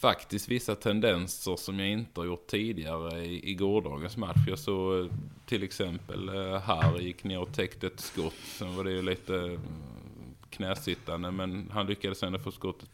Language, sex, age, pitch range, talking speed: Swedish, male, 20-39, 90-105 Hz, 165 wpm